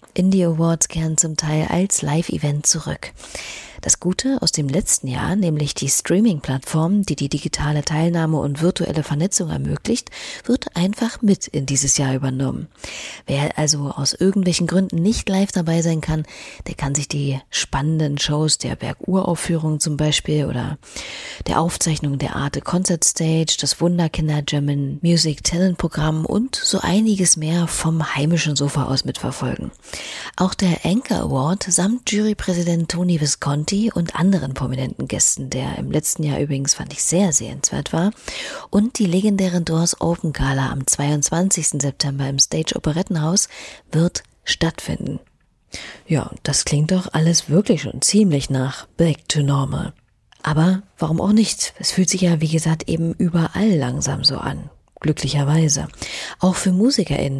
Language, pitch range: German, 145-185 Hz